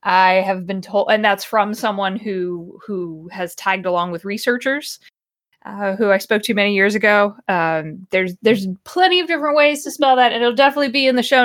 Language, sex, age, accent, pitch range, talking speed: English, female, 20-39, American, 185-265 Hz, 210 wpm